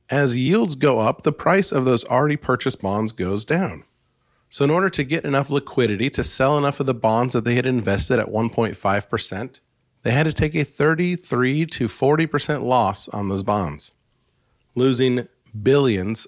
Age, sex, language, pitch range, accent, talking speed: 40-59, male, English, 110-140 Hz, American, 165 wpm